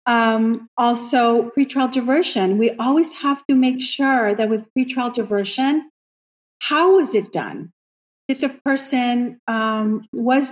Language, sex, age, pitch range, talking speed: English, female, 40-59, 220-270 Hz, 130 wpm